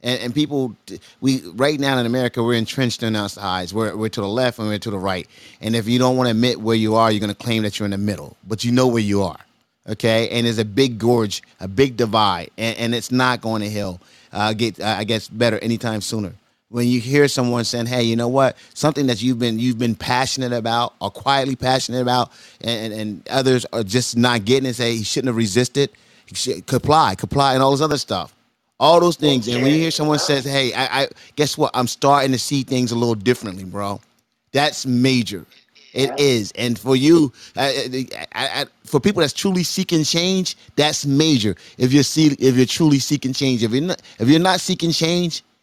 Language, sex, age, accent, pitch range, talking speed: English, male, 30-49, American, 115-145 Hz, 225 wpm